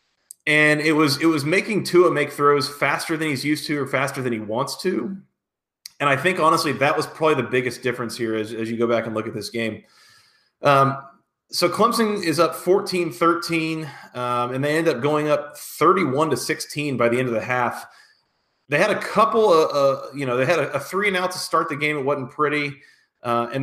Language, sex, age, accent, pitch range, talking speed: English, male, 30-49, American, 125-160 Hz, 220 wpm